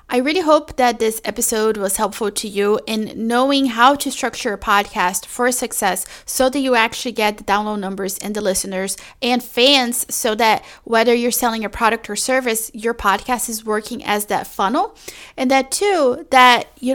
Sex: female